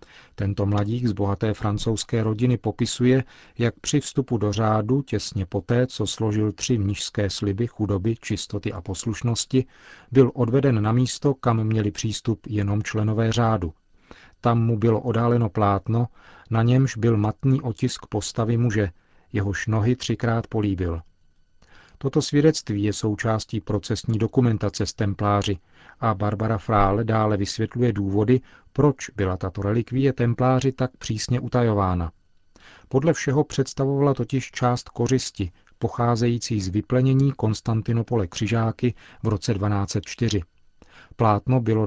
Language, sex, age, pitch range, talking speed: Czech, male, 40-59, 105-125 Hz, 125 wpm